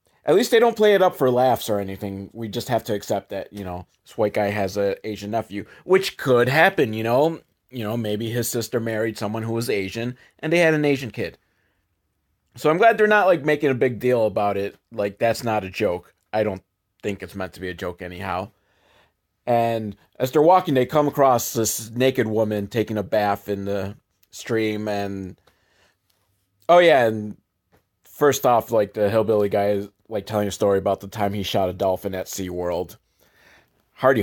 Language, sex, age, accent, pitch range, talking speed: English, male, 30-49, American, 100-120 Hz, 200 wpm